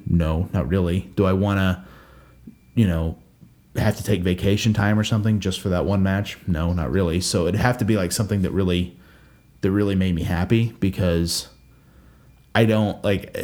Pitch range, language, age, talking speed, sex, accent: 90-110 Hz, English, 30-49, 185 wpm, male, American